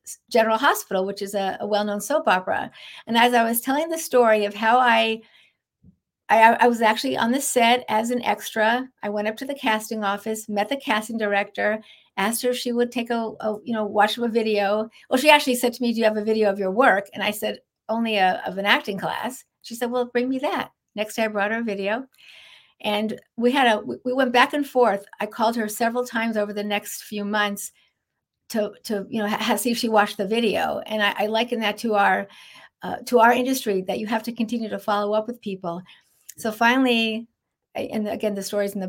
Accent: American